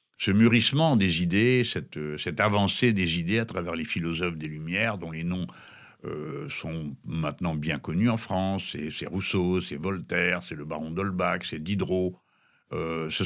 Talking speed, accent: 170 wpm, French